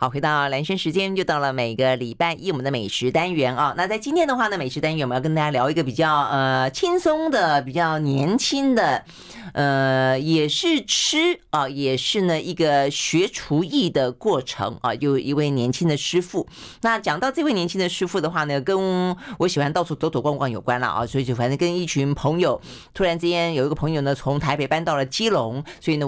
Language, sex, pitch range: Chinese, female, 140-190 Hz